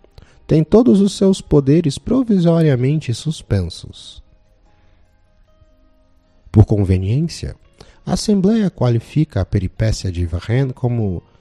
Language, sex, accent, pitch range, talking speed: Portuguese, male, Brazilian, 85-115 Hz, 90 wpm